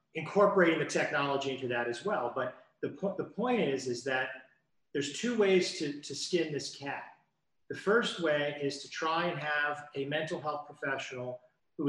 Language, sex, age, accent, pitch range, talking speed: English, male, 40-59, American, 135-165 Hz, 175 wpm